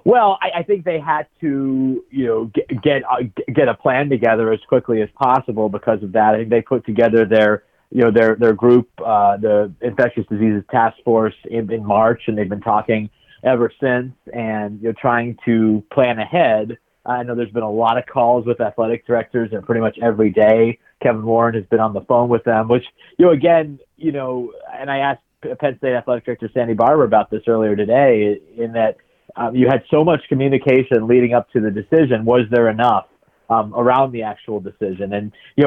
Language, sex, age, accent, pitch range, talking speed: English, male, 30-49, American, 110-125 Hz, 205 wpm